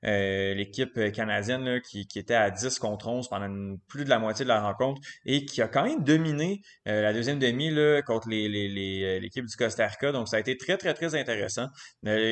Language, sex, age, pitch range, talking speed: French, male, 20-39, 105-140 Hz, 205 wpm